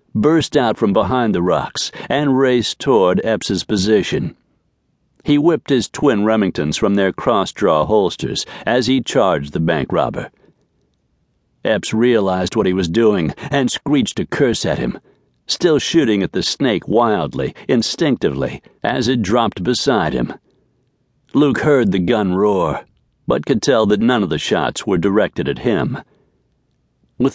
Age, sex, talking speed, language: 60-79, male, 150 wpm, English